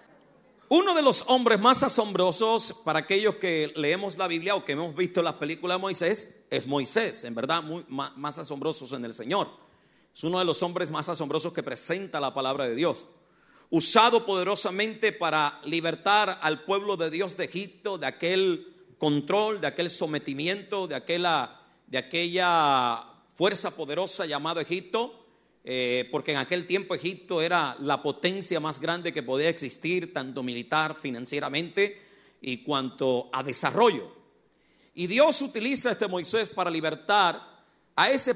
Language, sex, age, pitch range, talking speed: Spanish, male, 40-59, 155-205 Hz, 155 wpm